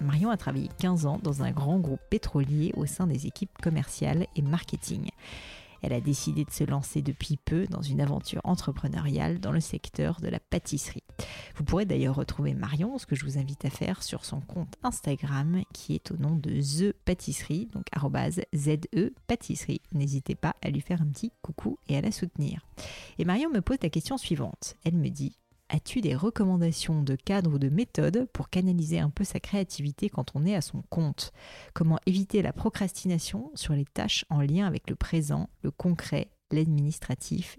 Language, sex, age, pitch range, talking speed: French, female, 40-59, 150-185 Hz, 185 wpm